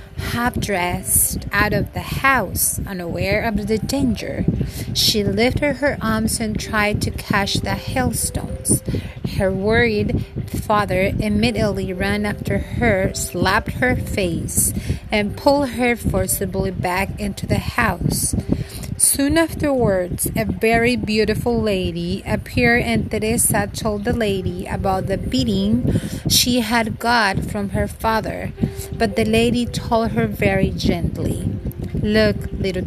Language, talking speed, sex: Spanish, 120 wpm, female